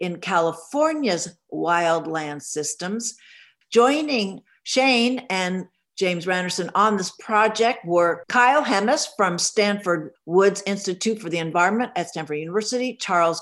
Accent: American